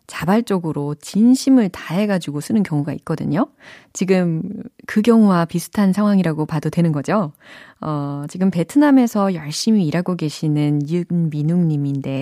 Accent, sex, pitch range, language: native, female, 150-220 Hz, Korean